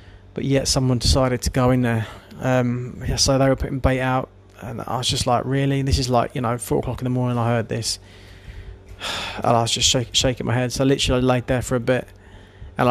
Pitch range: 115-135 Hz